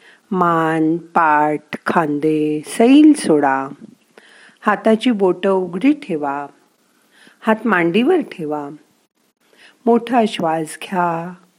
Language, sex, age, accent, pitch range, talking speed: Marathi, female, 50-69, native, 165-220 Hz, 80 wpm